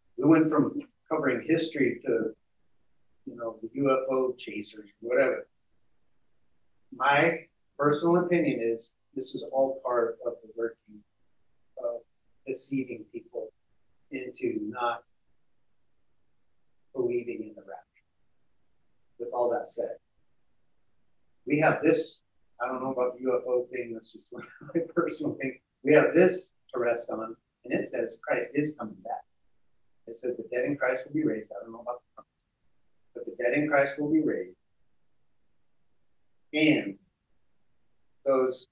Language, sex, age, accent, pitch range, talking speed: English, male, 40-59, American, 120-165 Hz, 140 wpm